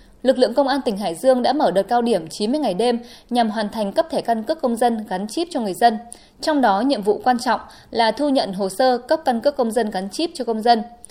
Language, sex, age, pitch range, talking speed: Vietnamese, female, 20-39, 215-270 Hz, 270 wpm